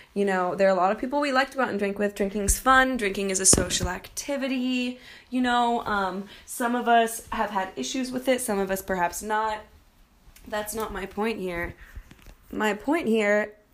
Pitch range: 190-235 Hz